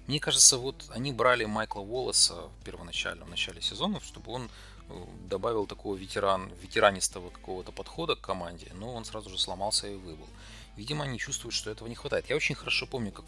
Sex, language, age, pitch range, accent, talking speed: male, Russian, 30-49, 90-110 Hz, native, 185 wpm